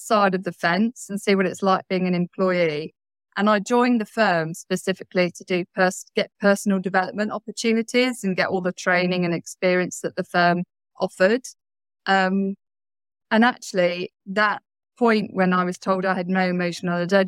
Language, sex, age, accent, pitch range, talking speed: English, female, 20-39, British, 180-215 Hz, 165 wpm